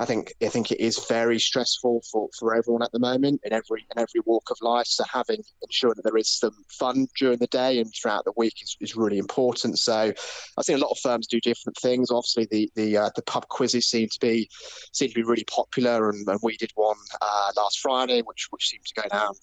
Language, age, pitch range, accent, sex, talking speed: English, 20-39, 110-120 Hz, British, male, 245 wpm